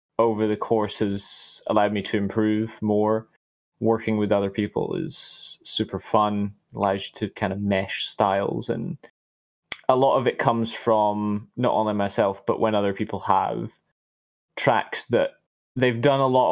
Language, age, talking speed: English, 20-39, 160 wpm